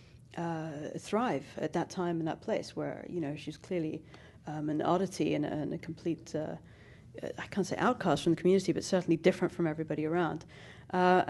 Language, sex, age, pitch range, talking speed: English, female, 40-59, 155-175 Hz, 190 wpm